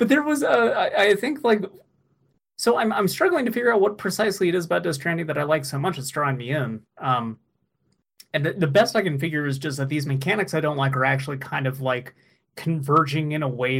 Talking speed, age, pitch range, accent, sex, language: 235 wpm, 30-49, 130-160 Hz, American, male, English